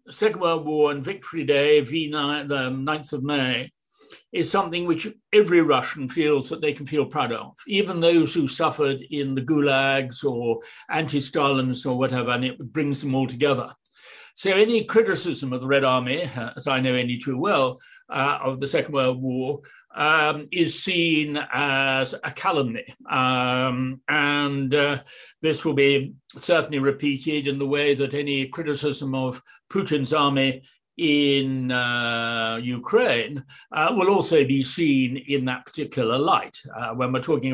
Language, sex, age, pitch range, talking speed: English, male, 60-79, 135-155 Hz, 155 wpm